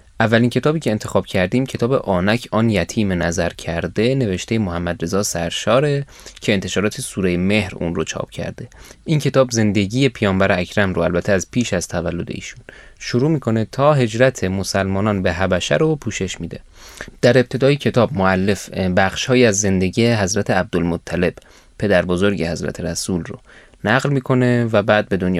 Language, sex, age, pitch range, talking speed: Persian, male, 20-39, 95-125 Hz, 155 wpm